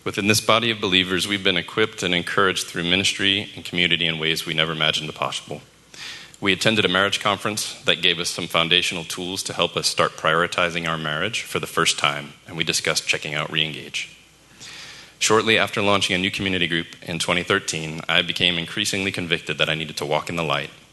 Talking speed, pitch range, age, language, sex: 200 wpm, 80-90 Hz, 30-49, English, male